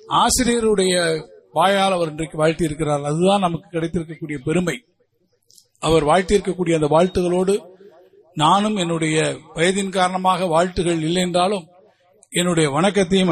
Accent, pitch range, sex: native, 165-200 Hz, male